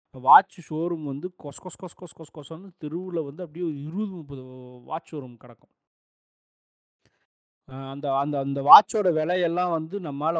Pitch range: 140-185 Hz